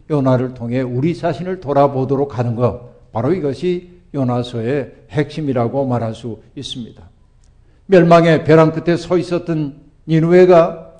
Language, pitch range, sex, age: Korean, 125-180 Hz, male, 60-79